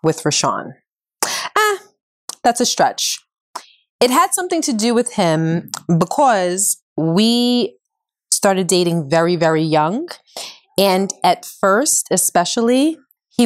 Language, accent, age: English, American, 30-49